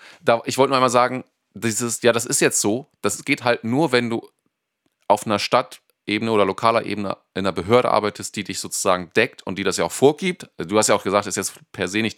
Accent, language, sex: German, German, male